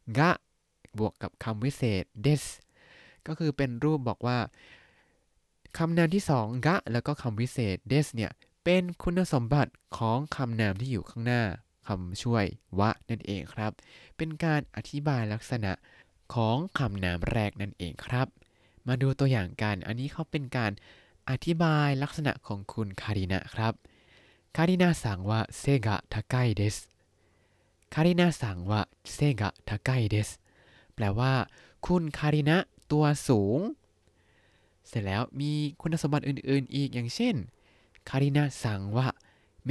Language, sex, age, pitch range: Thai, male, 20-39, 100-140 Hz